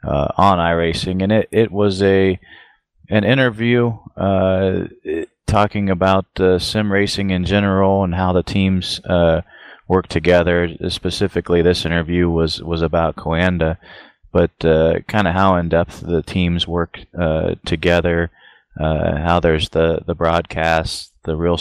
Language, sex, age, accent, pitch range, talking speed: English, male, 30-49, American, 80-90 Hz, 145 wpm